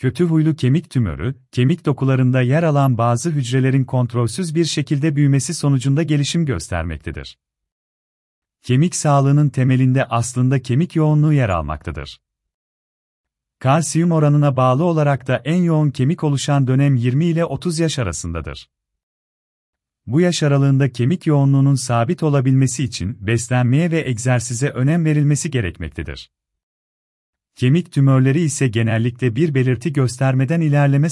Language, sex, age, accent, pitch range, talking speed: Turkish, male, 40-59, native, 85-145 Hz, 120 wpm